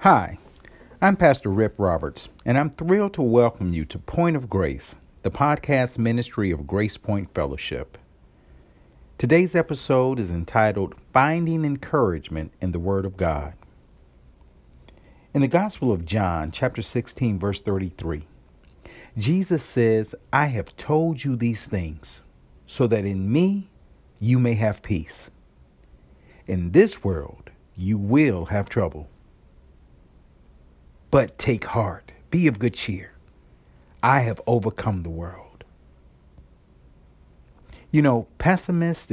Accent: American